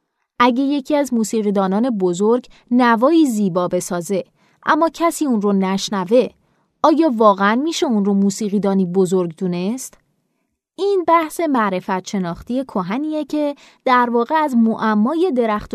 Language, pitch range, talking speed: Persian, 195-270 Hz, 120 wpm